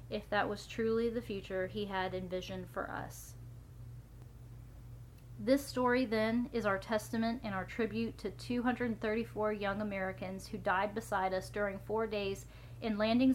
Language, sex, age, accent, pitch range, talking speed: English, female, 30-49, American, 185-225 Hz, 150 wpm